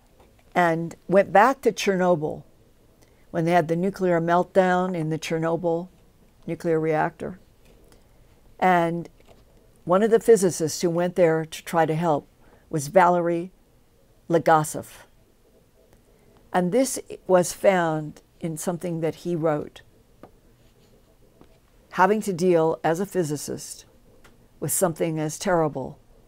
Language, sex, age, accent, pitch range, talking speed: English, female, 60-79, American, 150-195 Hz, 115 wpm